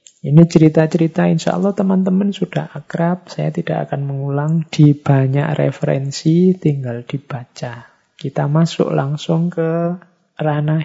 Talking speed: 115 wpm